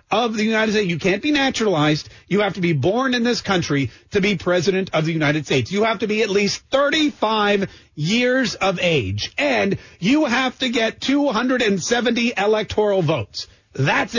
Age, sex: 40-59, male